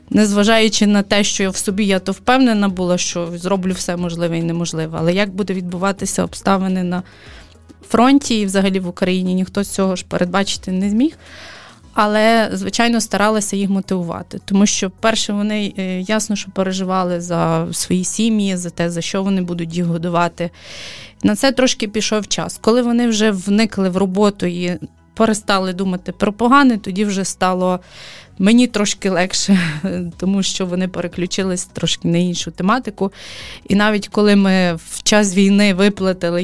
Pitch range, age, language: 180-205 Hz, 20-39, Ukrainian